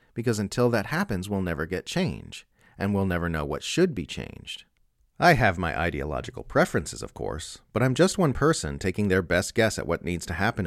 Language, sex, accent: English, male, American